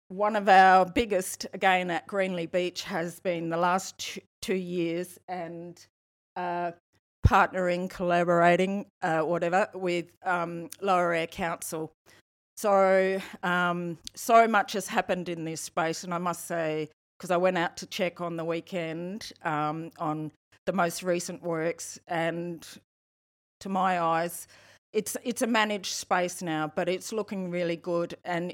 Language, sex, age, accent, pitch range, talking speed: English, female, 50-69, Australian, 165-190 Hz, 145 wpm